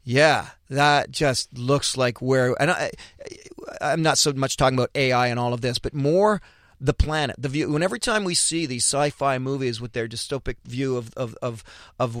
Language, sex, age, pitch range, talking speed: English, male, 40-59, 125-150 Hz, 200 wpm